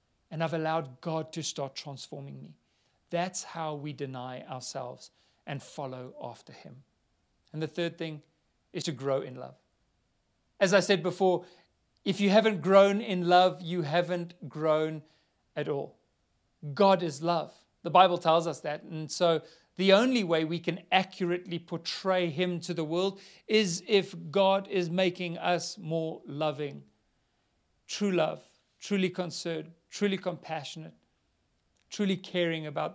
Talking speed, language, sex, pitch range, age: 145 wpm, English, male, 150-180 Hz, 40-59